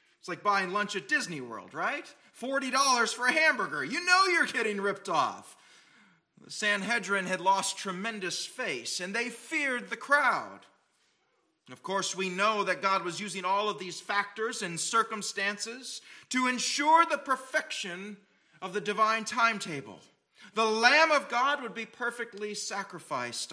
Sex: male